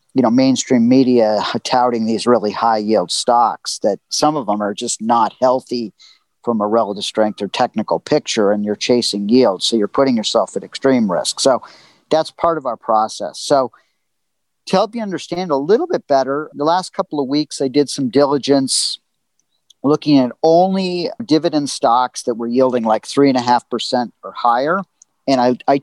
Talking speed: 185 wpm